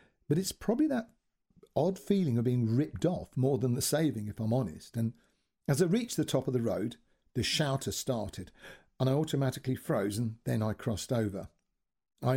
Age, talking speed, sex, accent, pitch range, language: 50-69, 190 wpm, male, British, 115-155 Hz, English